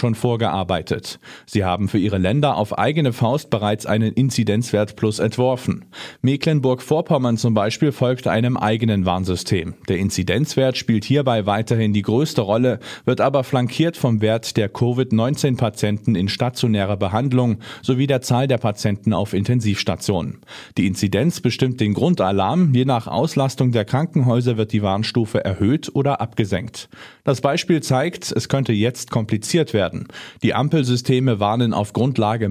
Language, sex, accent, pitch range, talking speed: German, male, German, 105-130 Hz, 140 wpm